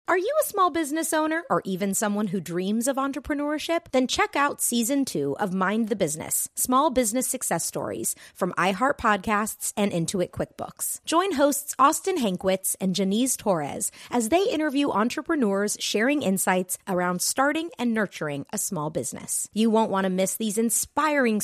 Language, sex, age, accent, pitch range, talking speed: English, female, 30-49, American, 180-260 Hz, 165 wpm